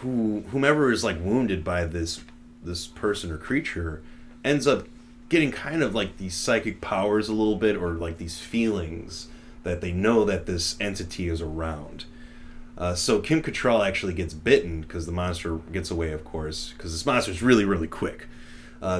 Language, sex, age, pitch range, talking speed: English, male, 30-49, 80-110 Hz, 180 wpm